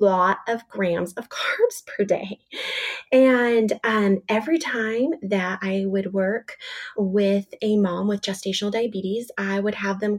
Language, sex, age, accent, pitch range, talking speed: English, female, 20-39, American, 195-245 Hz, 145 wpm